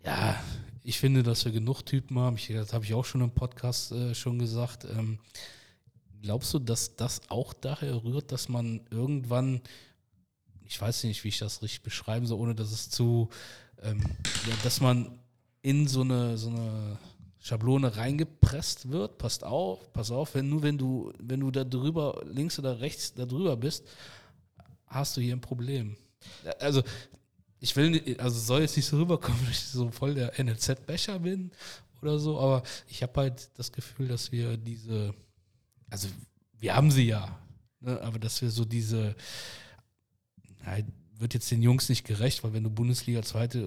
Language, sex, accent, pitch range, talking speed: German, male, German, 110-130 Hz, 175 wpm